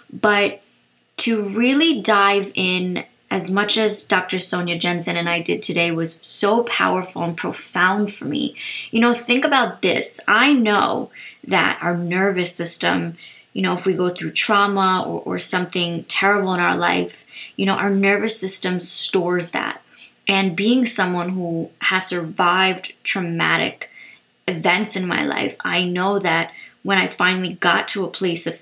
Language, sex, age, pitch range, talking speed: English, female, 20-39, 175-205 Hz, 160 wpm